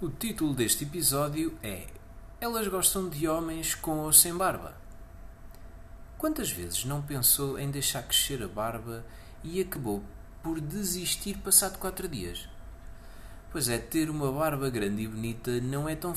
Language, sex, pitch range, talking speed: Portuguese, male, 95-155 Hz, 150 wpm